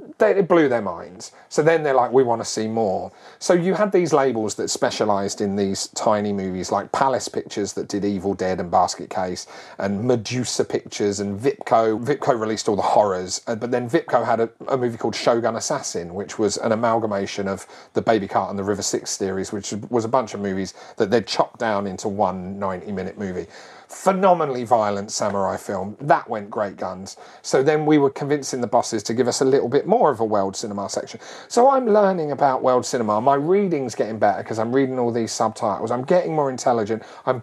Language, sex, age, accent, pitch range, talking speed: English, male, 40-59, British, 105-155 Hz, 205 wpm